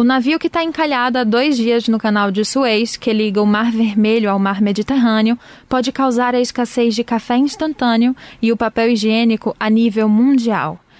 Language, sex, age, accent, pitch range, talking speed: Portuguese, female, 10-29, Brazilian, 215-260 Hz, 185 wpm